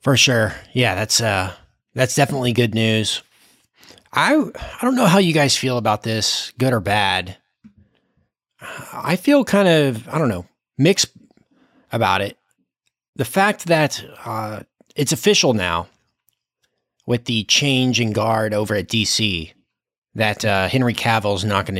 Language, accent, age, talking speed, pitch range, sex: English, American, 30-49, 145 wpm, 100-130 Hz, male